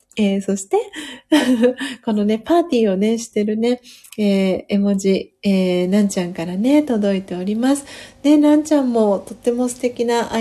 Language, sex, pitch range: Japanese, female, 185-240 Hz